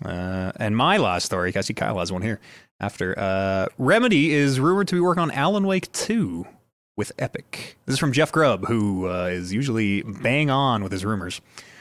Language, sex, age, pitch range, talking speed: English, male, 30-49, 95-160 Hz, 200 wpm